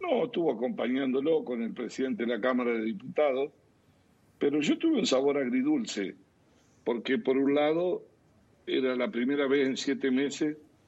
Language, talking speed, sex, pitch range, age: Spanish, 155 wpm, male, 115-160 Hz, 60-79